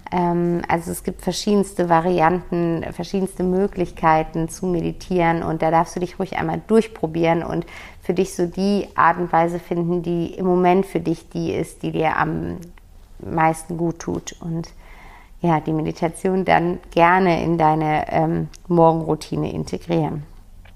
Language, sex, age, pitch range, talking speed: German, female, 50-69, 160-180 Hz, 145 wpm